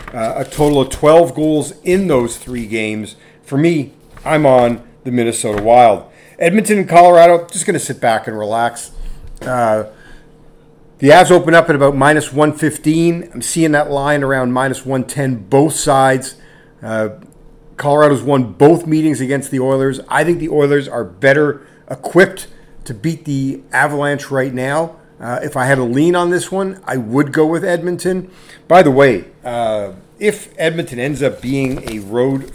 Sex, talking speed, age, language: male, 170 wpm, 40-59, English